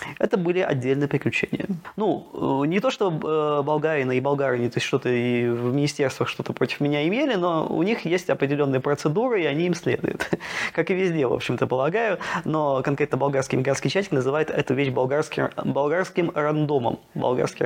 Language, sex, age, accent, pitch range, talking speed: Russian, male, 20-39, native, 130-165 Hz, 165 wpm